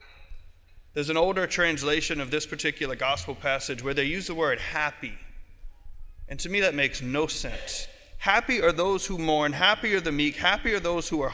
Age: 30-49